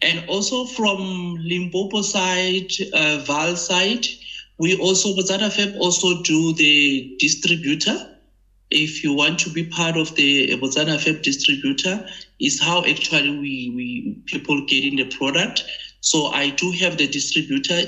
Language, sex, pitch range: English, male, 135-175 Hz